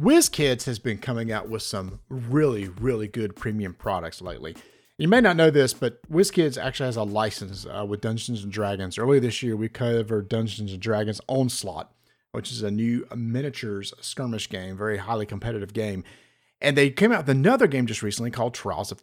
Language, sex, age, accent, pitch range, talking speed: English, male, 40-59, American, 110-145 Hz, 190 wpm